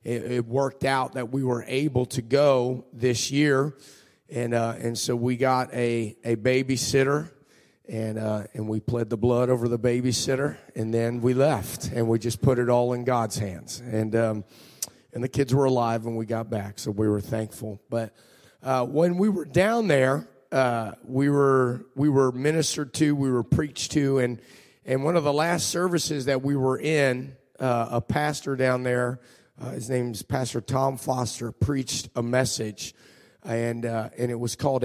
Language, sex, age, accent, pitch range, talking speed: English, male, 30-49, American, 120-140 Hz, 185 wpm